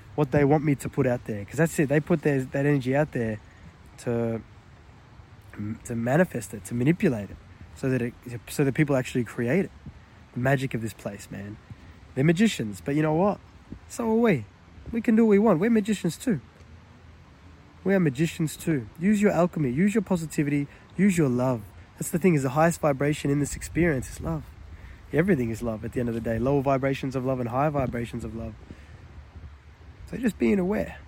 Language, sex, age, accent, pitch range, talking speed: English, male, 20-39, Australian, 90-150 Hz, 205 wpm